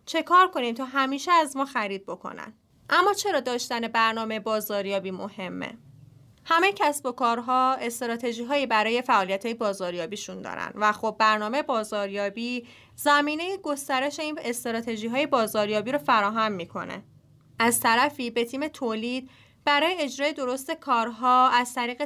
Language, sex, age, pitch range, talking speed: Persian, female, 30-49, 220-280 Hz, 135 wpm